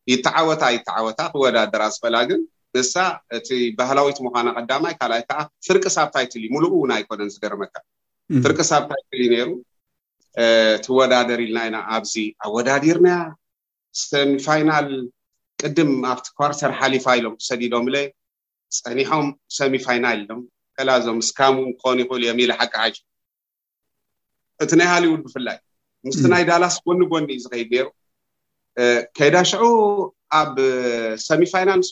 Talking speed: 95 wpm